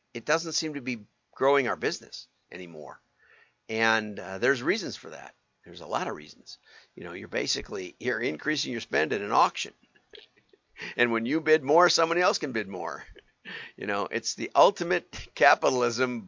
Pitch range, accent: 115-145 Hz, American